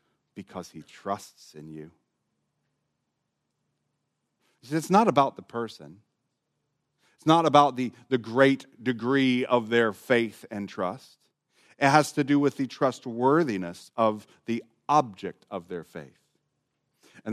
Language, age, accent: English, 40-59, American